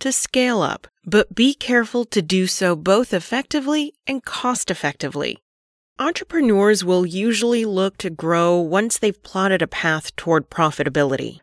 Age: 30-49